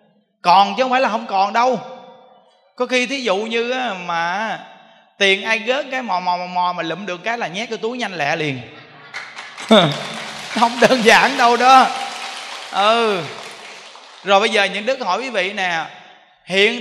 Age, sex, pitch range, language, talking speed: 20-39, male, 180-260 Hz, Vietnamese, 175 wpm